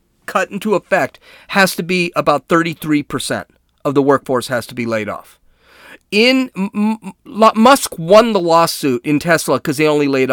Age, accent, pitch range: 40-59, American, 135-195 Hz